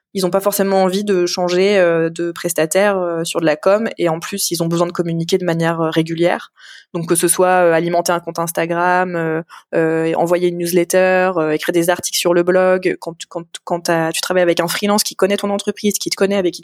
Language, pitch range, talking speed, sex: French, 165-195 Hz, 230 wpm, female